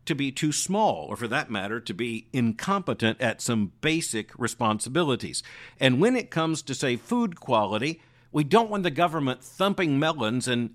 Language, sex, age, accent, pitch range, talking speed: English, male, 50-69, American, 125-165 Hz, 175 wpm